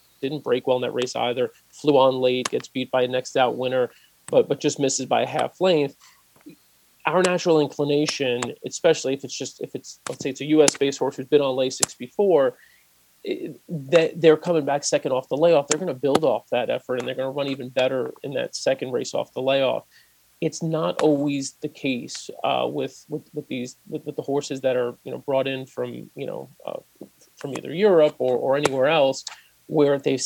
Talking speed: 215 wpm